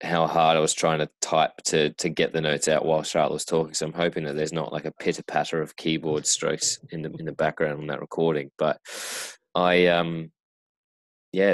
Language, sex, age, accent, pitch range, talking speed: English, male, 20-39, Australian, 75-80 Hz, 220 wpm